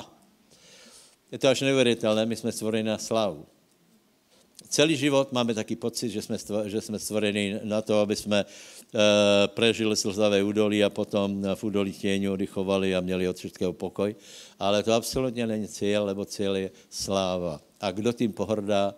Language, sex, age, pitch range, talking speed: Slovak, male, 60-79, 100-115 Hz, 160 wpm